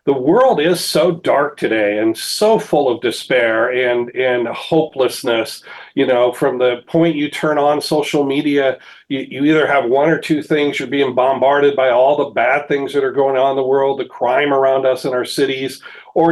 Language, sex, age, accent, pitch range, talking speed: English, male, 40-59, American, 140-170 Hz, 200 wpm